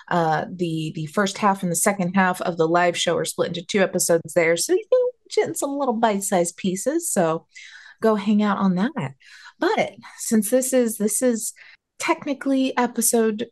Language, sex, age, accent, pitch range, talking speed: English, female, 30-49, American, 175-250 Hz, 180 wpm